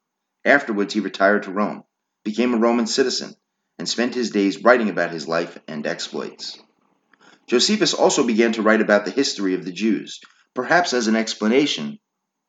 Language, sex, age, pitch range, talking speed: English, male, 30-49, 90-115 Hz, 165 wpm